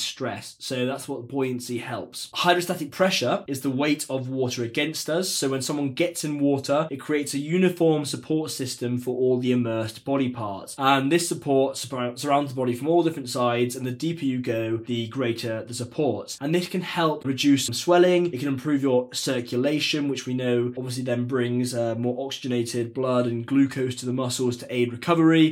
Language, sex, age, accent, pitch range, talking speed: English, male, 20-39, British, 125-150 Hz, 195 wpm